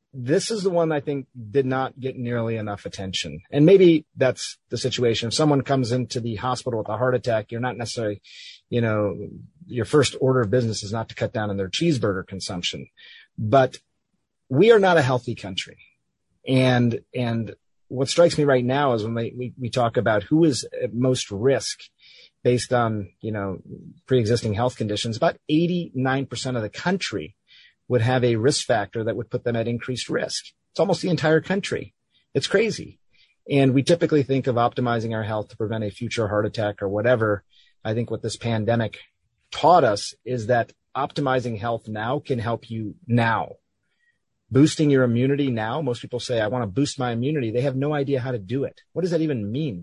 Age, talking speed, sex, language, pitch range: 30-49, 195 wpm, male, English, 115-140 Hz